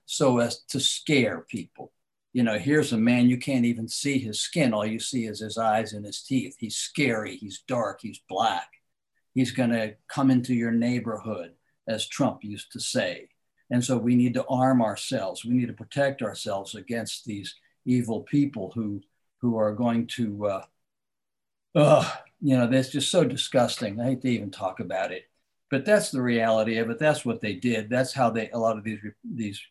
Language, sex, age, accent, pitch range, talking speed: English, male, 60-79, American, 110-130 Hz, 195 wpm